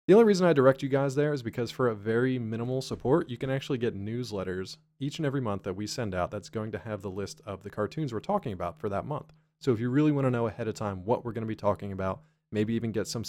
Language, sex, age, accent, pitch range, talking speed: English, male, 20-39, American, 105-150 Hz, 290 wpm